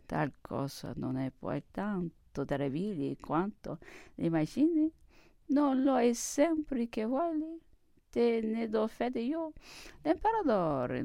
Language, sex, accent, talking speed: English, female, Italian, 115 wpm